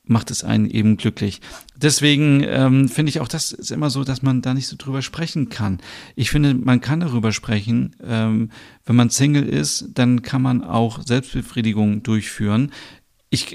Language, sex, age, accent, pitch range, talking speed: German, male, 40-59, German, 110-125 Hz, 175 wpm